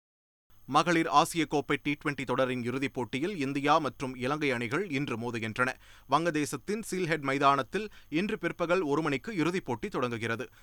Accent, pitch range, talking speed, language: native, 125-170 Hz, 130 wpm, Tamil